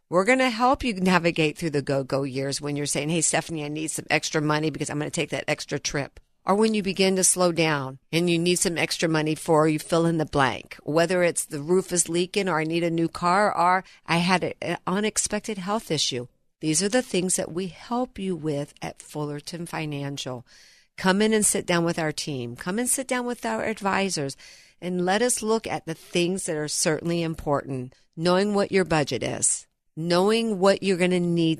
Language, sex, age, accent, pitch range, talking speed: English, female, 50-69, American, 155-200 Hz, 220 wpm